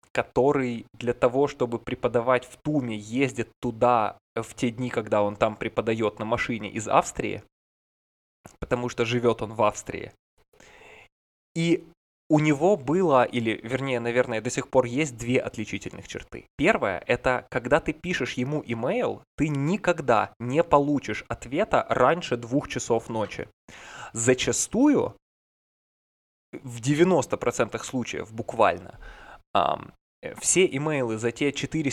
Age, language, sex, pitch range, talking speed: 20-39, Russian, male, 120-145 Hz, 125 wpm